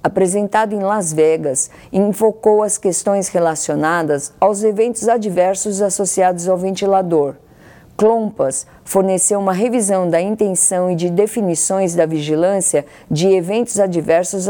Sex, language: female, Portuguese